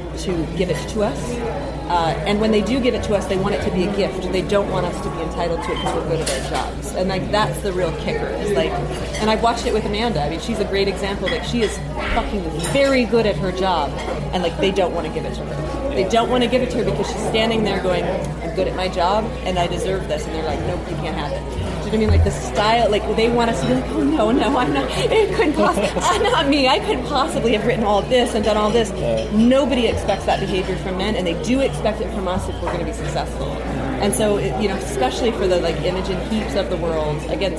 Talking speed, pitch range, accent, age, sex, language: 280 wpm, 180-230 Hz, American, 30-49, female, English